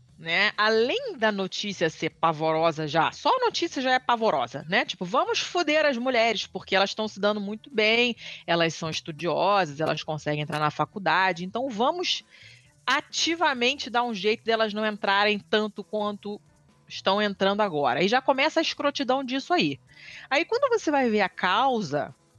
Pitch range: 195-290 Hz